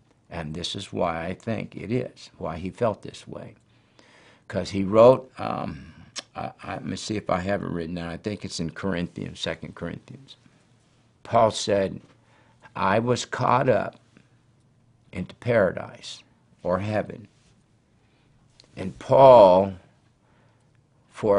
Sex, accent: male, American